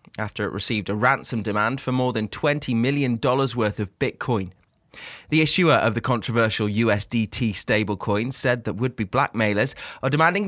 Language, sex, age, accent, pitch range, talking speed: English, male, 20-39, British, 105-135 Hz, 155 wpm